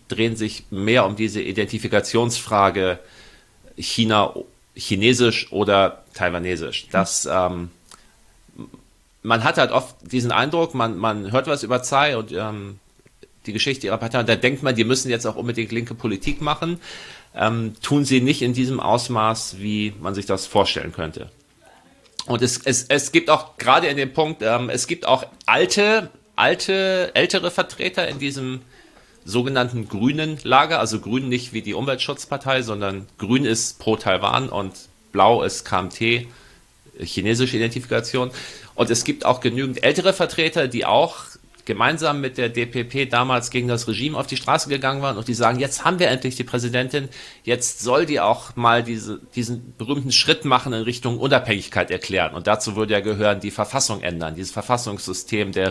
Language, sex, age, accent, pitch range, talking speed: German, male, 40-59, German, 105-130 Hz, 160 wpm